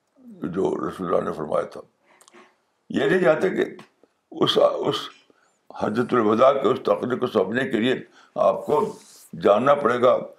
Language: Urdu